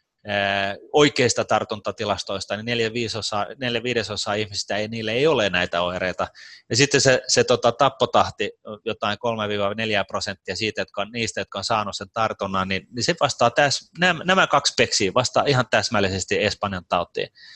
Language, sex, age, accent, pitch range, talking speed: Finnish, male, 30-49, native, 105-125 Hz, 155 wpm